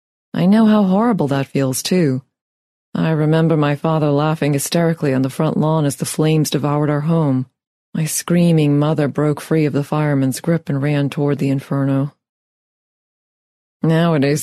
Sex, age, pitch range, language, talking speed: female, 30-49, 140-170 Hz, English, 160 wpm